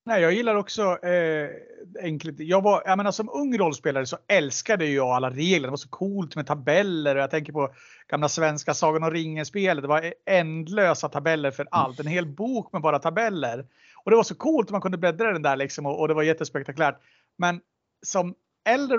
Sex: male